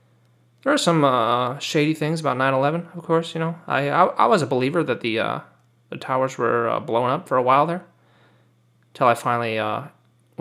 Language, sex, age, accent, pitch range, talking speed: English, male, 30-49, American, 120-160 Hz, 210 wpm